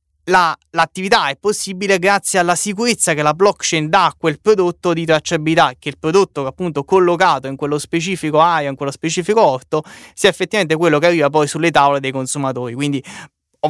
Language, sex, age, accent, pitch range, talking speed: Italian, male, 20-39, native, 145-185 Hz, 180 wpm